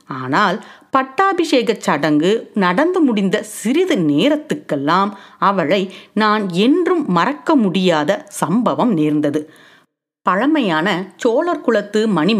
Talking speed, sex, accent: 80 wpm, female, native